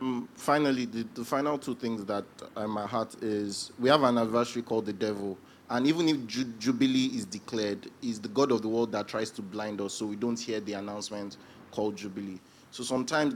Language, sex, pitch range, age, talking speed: English, male, 115-140 Hz, 30-49, 210 wpm